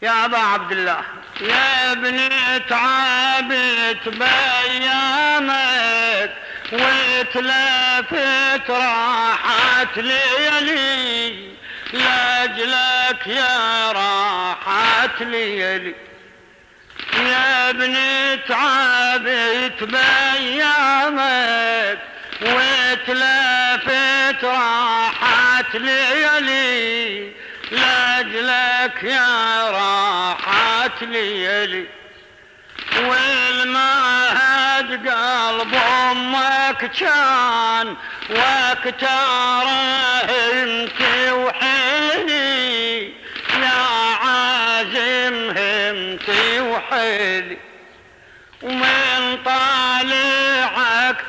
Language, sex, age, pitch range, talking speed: Arabic, male, 50-69, 230-265 Hz, 45 wpm